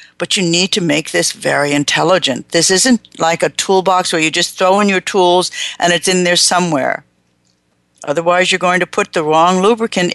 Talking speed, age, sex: 195 wpm, 60-79, female